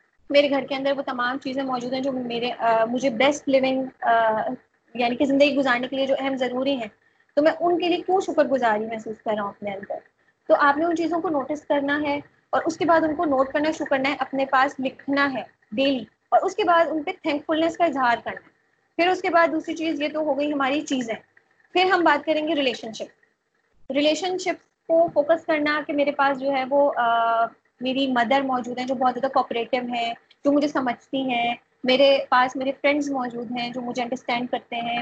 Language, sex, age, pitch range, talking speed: Urdu, female, 20-39, 250-305 Hz, 220 wpm